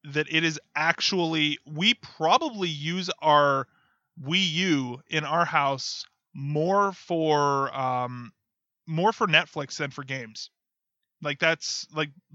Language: English